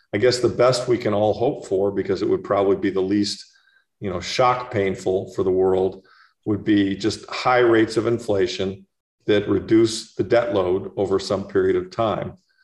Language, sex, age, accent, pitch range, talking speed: English, male, 50-69, American, 100-120 Hz, 190 wpm